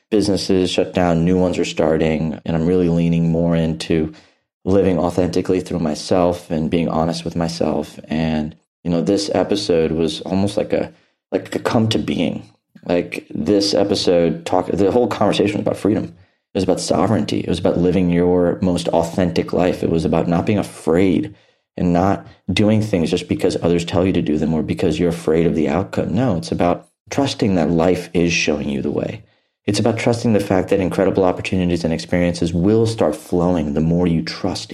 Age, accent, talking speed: 30-49, American, 190 wpm